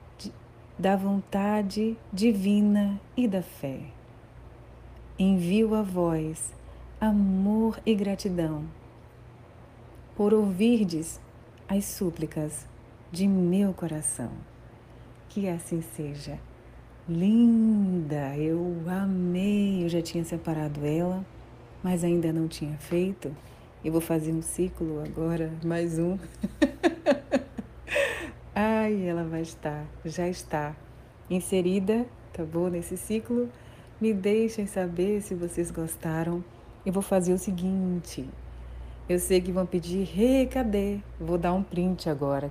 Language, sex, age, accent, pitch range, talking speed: Portuguese, female, 40-59, Brazilian, 150-200 Hz, 110 wpm